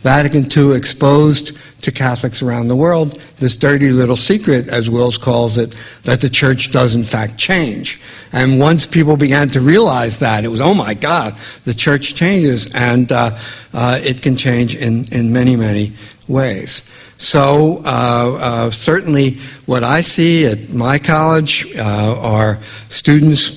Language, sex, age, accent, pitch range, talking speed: English, male, 60-79, American, 120-145 Hz, 160 wpm